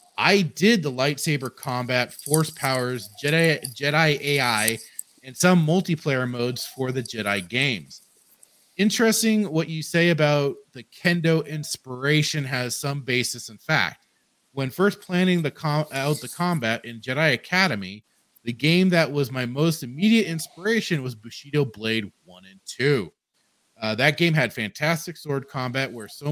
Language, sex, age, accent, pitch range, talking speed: English, male, 30-49, American, 120-165 Hz, 150 wpm